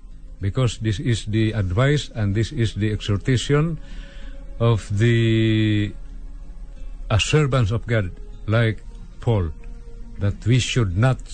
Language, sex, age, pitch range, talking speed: Filipino, male, 50-69, 110-145 Hz, 110 wpm